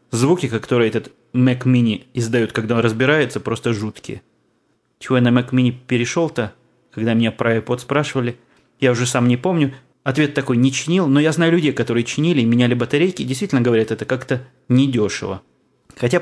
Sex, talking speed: male, 170 wpm